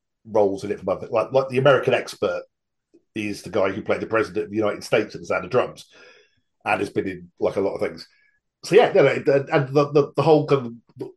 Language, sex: English, male